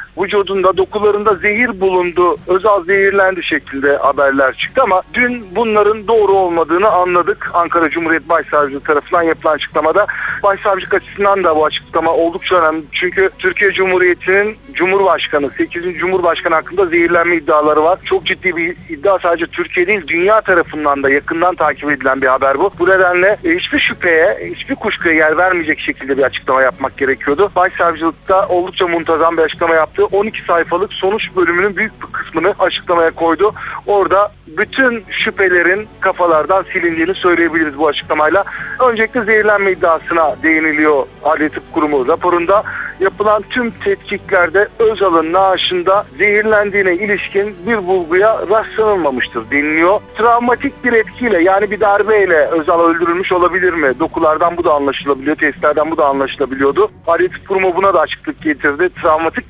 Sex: male